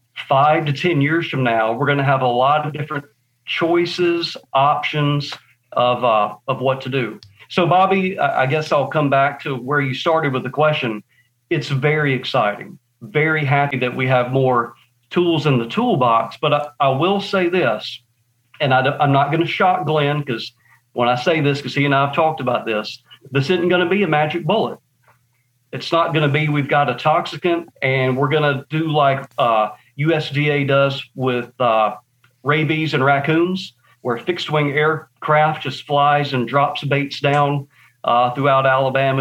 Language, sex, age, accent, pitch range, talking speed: English, male, 40-59, American, 125-150 Hz, 180 wpm